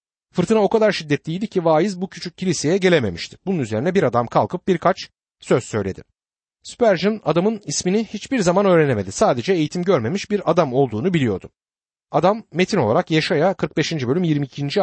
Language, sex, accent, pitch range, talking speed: Turkish, male, native, 130-190 Hz, 155 wpm